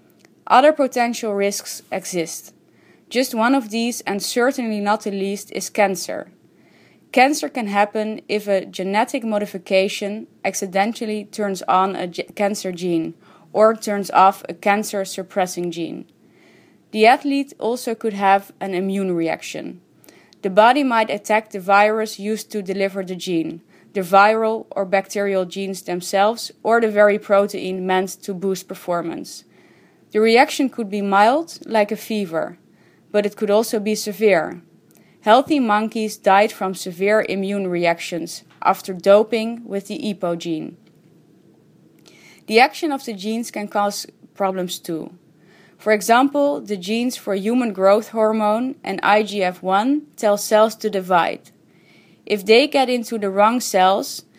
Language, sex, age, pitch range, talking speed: English, female, 20-39, 195-225 Hz, 135 wpm